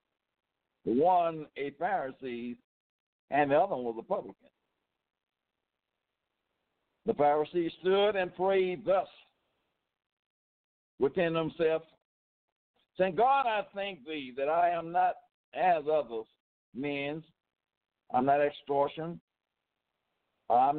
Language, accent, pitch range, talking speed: English, American, 145-195 Hz, 95 wpm